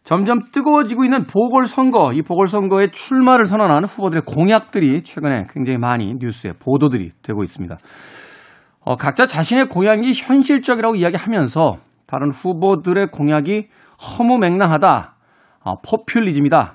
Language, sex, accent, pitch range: Korean, male, native, 145-230 Hz